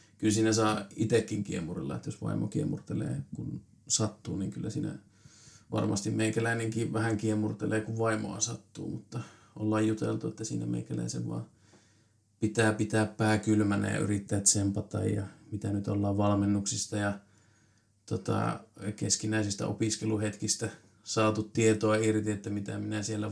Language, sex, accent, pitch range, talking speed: Finnish, male, native, 105-110 Hz, 130 wpm